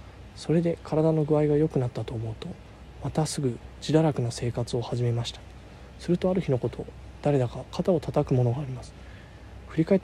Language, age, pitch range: Japanese, 20-39, 120-155 Hz